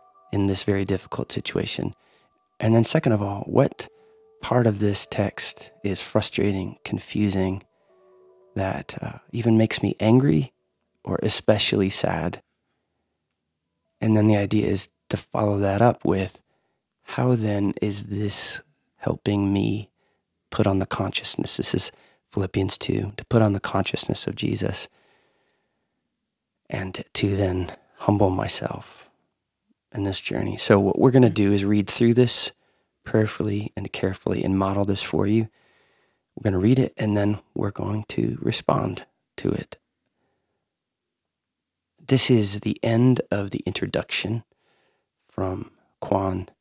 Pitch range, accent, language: 95-110 Hz, American, English